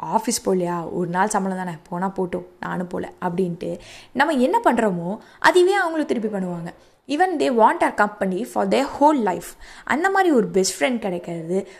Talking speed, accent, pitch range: 175 wpm, native, 180-225 Hz